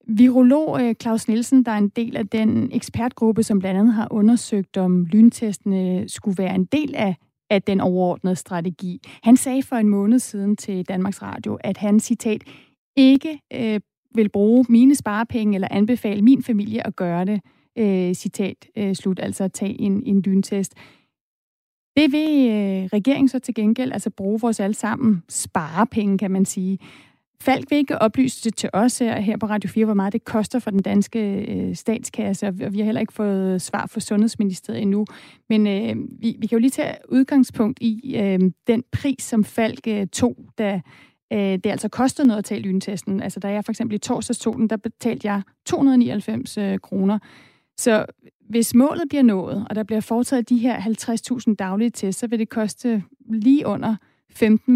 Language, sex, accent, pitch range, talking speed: Danish, female, native, 200-240 Hz, 180 wpm